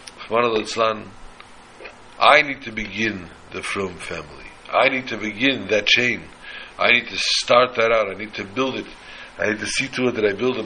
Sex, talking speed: male, 190 wpm